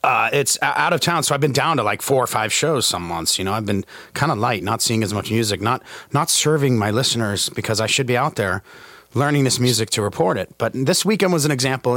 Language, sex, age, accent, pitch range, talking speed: English, male, 30-49, American, 130-175 Hz, 260 wpm